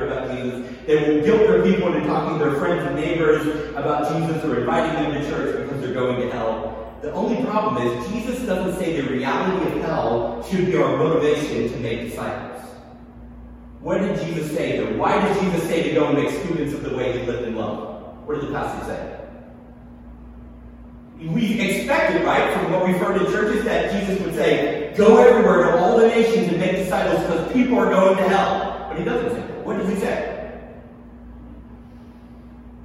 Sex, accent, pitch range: male, American, 135-210 Hz